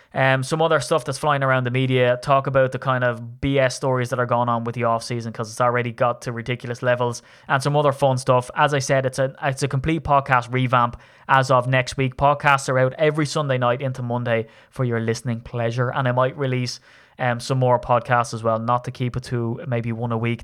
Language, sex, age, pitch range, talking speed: English, male, 20-39, 125-140 Hz, 240 wpm